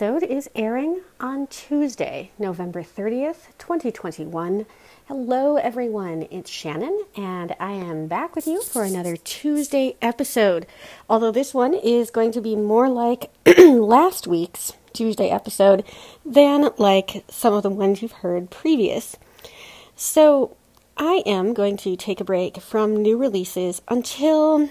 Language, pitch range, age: English, 185-240 Hz, 40-59